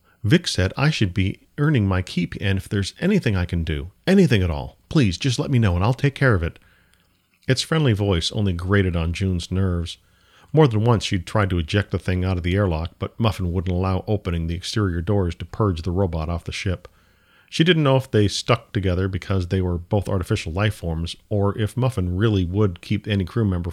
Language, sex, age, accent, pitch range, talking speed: English, male, 50-69, American, 90-110 Hz, 225 wpm